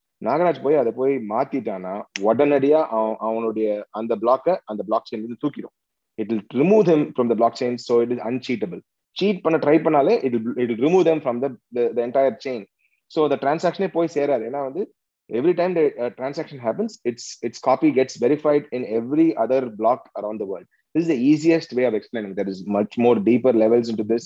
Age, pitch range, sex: 30-49, 115-150 Hz, male